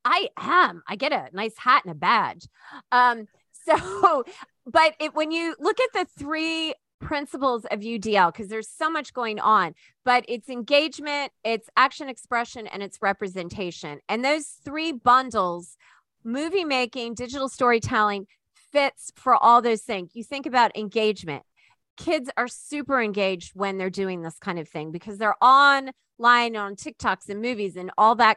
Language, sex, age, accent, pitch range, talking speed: English, female, 30-49, American, 205-270 Hz, 160 wpm